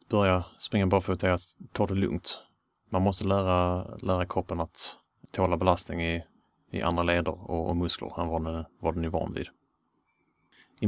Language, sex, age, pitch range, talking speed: English, male, 30-49, 85-95 Hz, 170 wpm